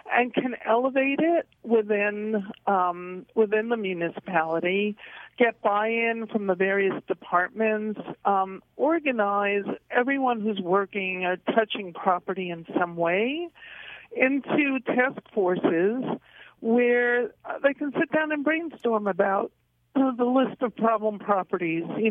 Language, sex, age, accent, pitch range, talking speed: English, female, 50-69, American, 195-250 Hz, 115 wpm